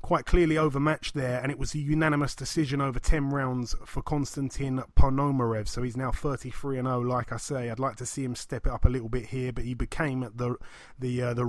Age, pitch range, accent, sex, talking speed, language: 30-49, 125-150 Hz, British, male, 230 wpm, English